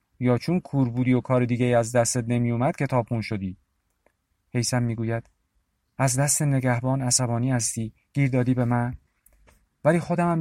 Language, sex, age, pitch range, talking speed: Persian, male, 40-59, 105-135 Hz, 155 wpm